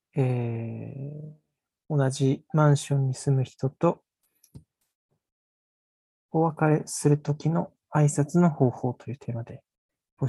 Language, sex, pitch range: Japanese, male, 130-150 Hz